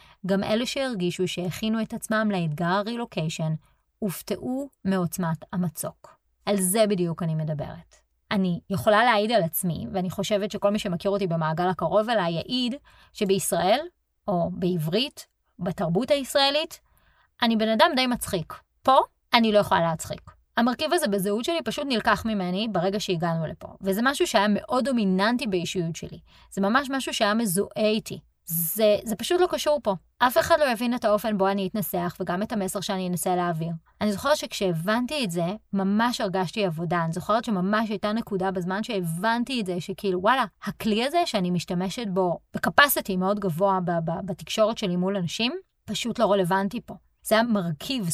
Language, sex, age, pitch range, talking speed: Hebrew, female, 30-49, 180-230 Hz, 160 wpm